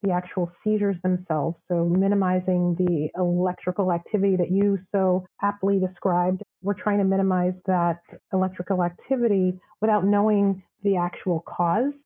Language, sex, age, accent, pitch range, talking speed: English, female, 30-49, American, 175-200 Hz, 130 wpm